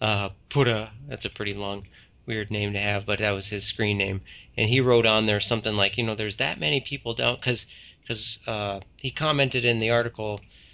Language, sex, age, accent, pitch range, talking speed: English, male, 30-49, American, 105-130 Hz, 200 wpm